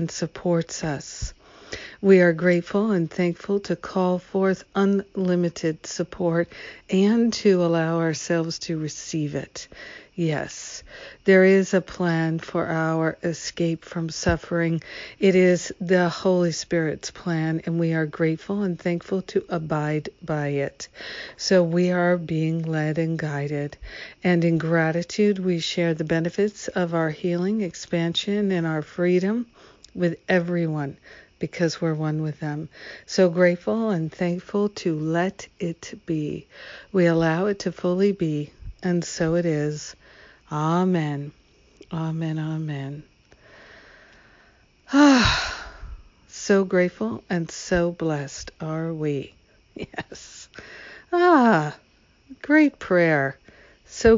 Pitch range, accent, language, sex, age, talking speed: 160-185 Hz, American, English, female, 60-79, 120 wpm